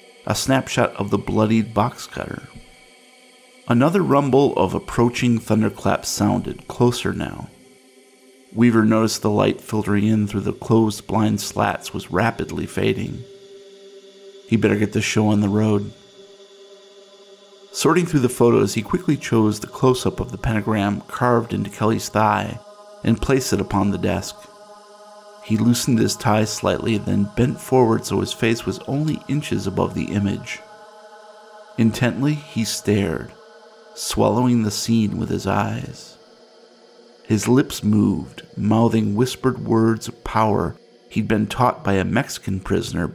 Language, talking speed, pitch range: English, 140 wpm, 105-150 Hz